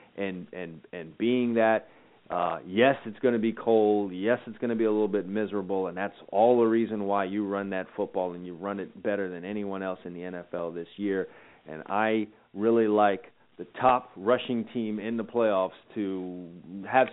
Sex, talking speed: male, 200 wpm